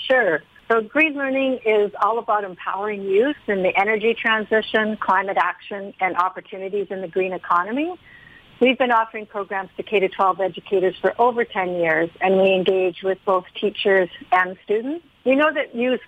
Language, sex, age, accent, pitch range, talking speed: English, female, 50-69, American, 185-230 Hz, 165 wpm